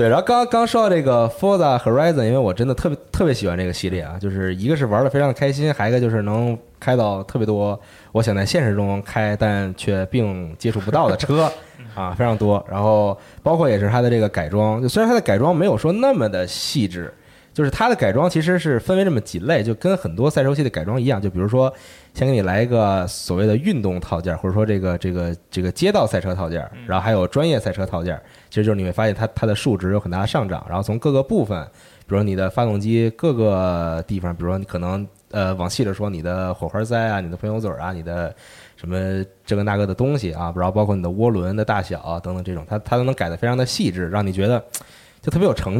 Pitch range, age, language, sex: 95-125 Hz, 20-39, Chinese, male